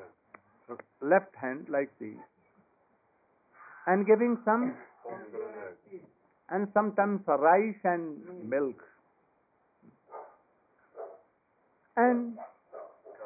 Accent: Indian